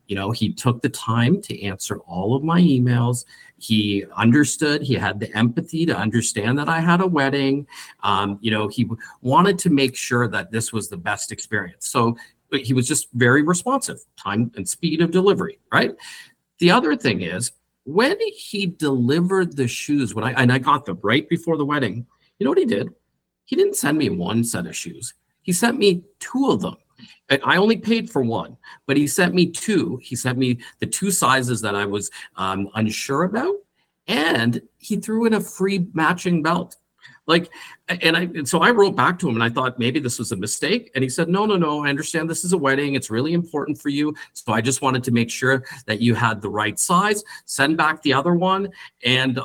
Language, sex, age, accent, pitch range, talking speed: English, male, 50-69, American, 115-170 Hz, 210 wpm